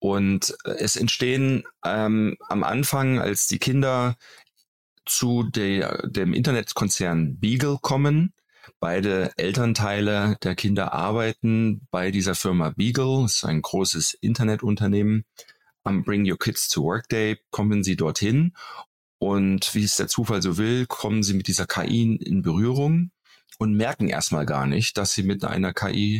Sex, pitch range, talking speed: male, 95-120 Hz, 145 wpm